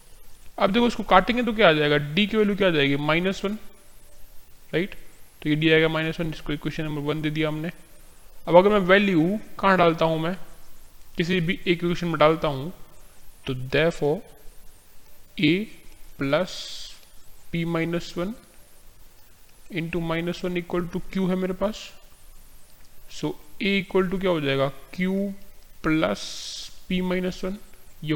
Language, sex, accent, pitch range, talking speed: Hindi, male, native, 145-180 Hz, 160 wpm